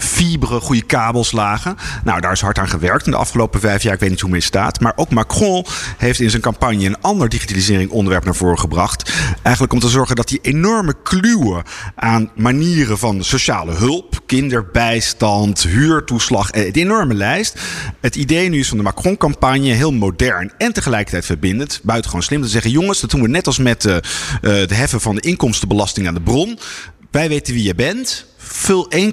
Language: Dutch